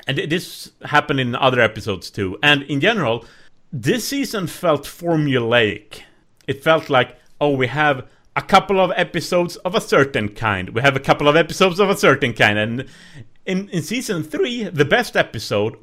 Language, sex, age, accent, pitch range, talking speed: English, male, 30-49, Norwegian, 125-190 Hz, 175 wpm